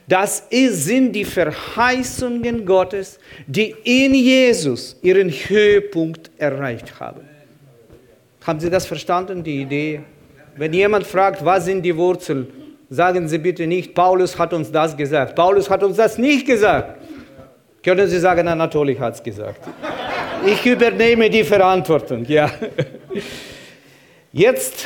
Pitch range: 145-205 Hz